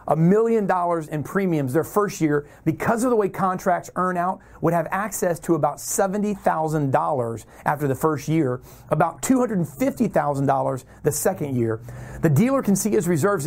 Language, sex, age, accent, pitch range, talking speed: English, male, 40-59, American, 150-210 Hz, 160 wpm